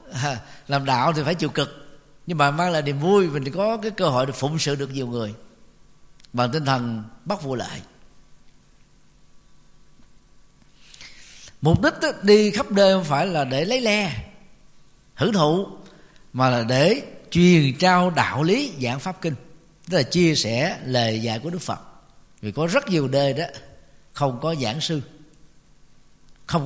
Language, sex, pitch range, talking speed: Vietnamese, male, 140-175 Hz, 165 wpm